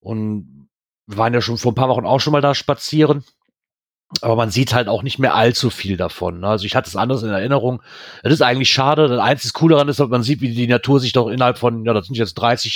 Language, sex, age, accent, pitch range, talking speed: German, male, 40-59, German, 110-135 Hz, 260 wpm